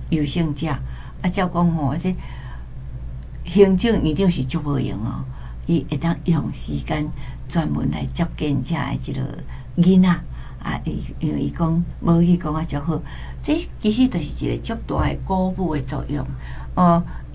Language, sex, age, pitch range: Chinese, female, 60-79, 130-175 Hz